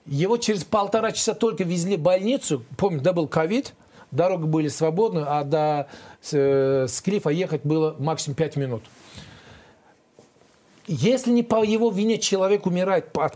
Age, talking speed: 40-59, 145 wpm